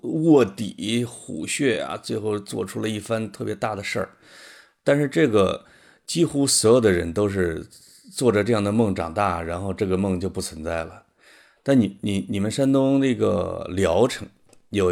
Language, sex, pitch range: Chinese, male, 95-120 Hz